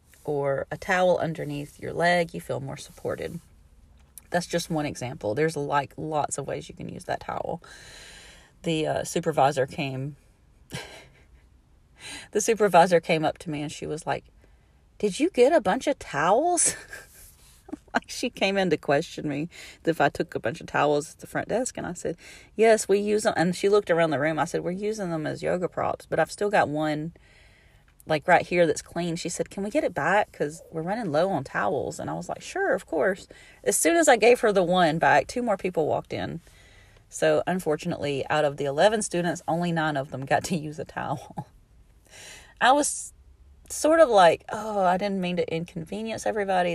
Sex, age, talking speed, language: female, 30-49, 200 wpm, English